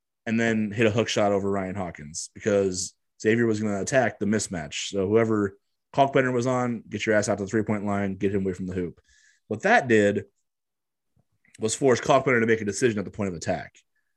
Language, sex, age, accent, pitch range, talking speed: English, male, 30-49, American, 100-115 Hz, 215 wpm